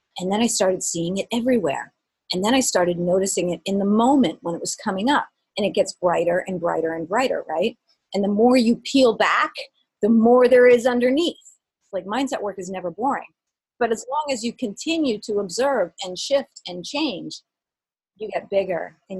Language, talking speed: English, 195 wpm